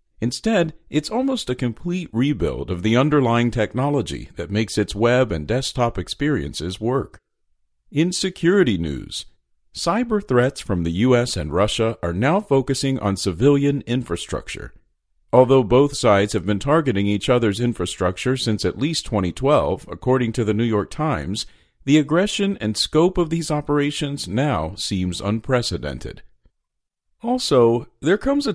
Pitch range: 105-150 Hz